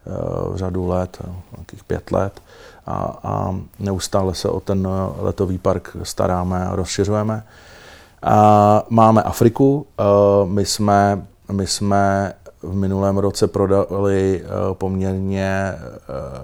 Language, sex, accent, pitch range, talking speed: Czech, male, native, 95-100 Hz, 100 wpm